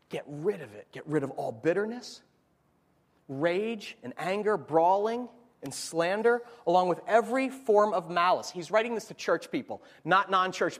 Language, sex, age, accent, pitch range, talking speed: English, male, 30-49, American, 150-210 Hz, 160 wpm